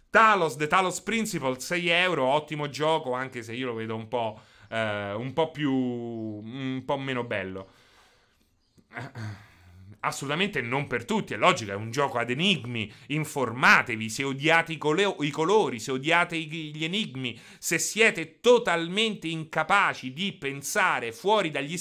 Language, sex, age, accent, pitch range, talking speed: Italian, male, 30-49, native, 120-170 Hz, 145 wpm